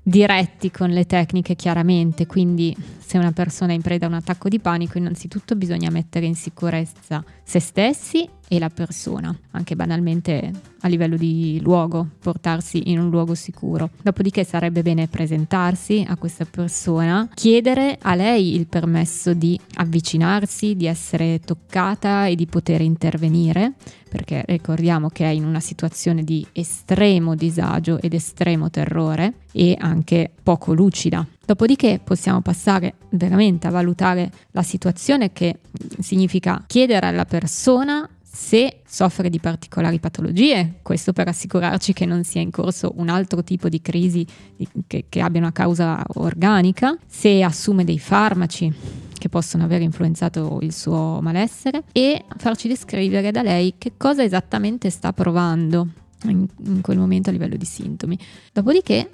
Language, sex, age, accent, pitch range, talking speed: Italian, female, 20-39, native, 165-195 Hz, 145 wpm